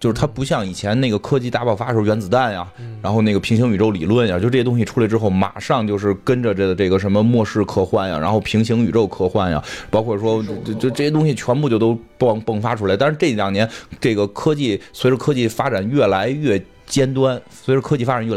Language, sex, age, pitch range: Chinese, male, 20-39, 100-125 Hz